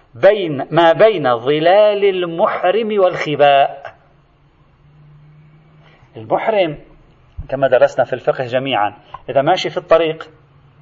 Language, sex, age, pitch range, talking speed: Arabic, male, 40-59, 140-185 Hz, 90 wpm